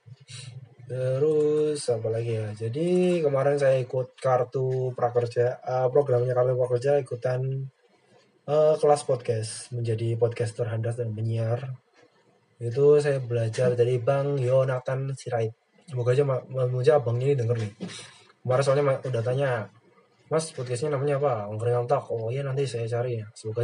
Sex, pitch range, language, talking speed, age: male, 120-140 Hz, Indonesian, 135 wpm, 20-39